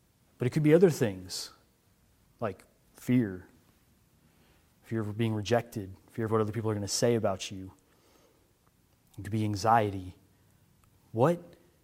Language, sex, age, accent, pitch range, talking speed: English, male, 30-49, American, 105-120 Hz, 140 wpm